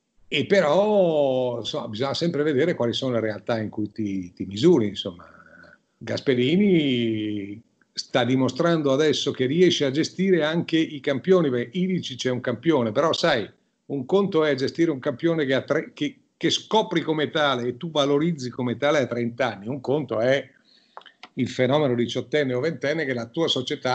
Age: 50-69